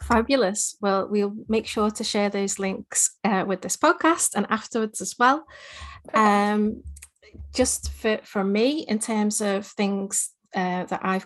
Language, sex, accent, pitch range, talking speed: English, female, British, 185-220 Hz, 155 wpm